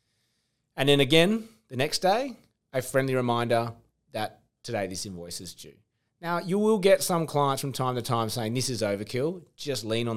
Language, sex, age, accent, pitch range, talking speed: English, male, 30-49, Australian, 105-130 Hz, 190 wpm